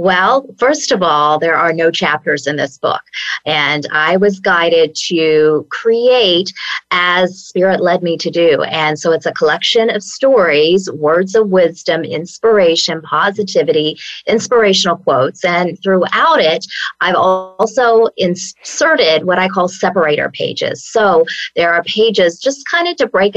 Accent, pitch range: American, 165-205 Hz